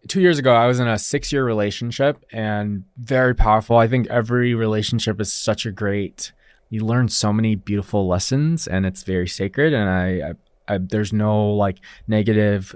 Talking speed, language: 180 wpm, English